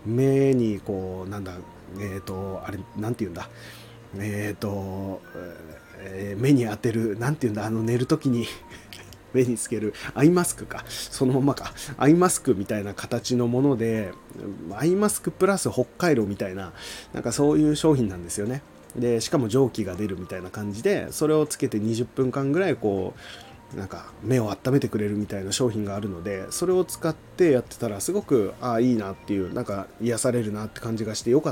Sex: male